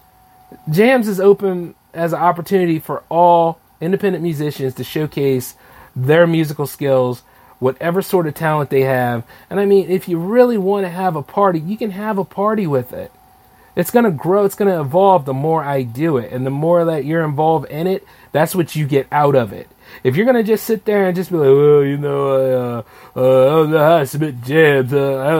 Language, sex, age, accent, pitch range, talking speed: English, male, 30-49, American, 150-210 Hz, 220 wpm